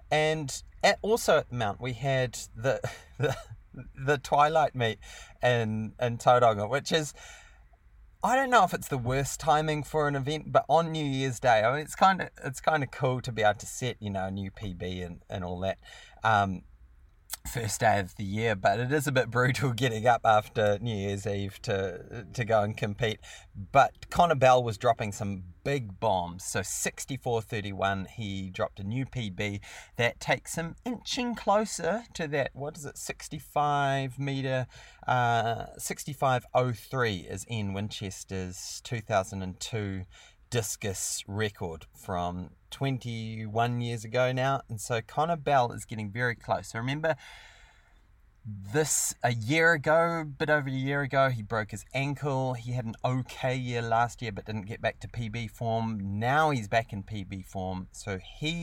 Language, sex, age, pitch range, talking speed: English, male, 30-49, 100-135 Hz, 170 wpm